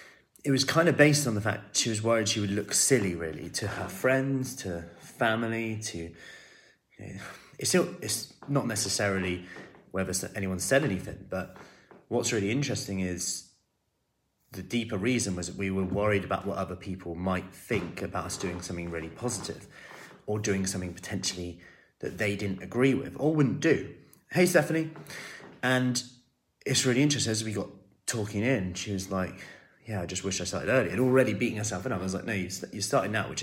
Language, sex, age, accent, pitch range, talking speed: English, male, 30-49, British, 95-130 Hz, 185 wpm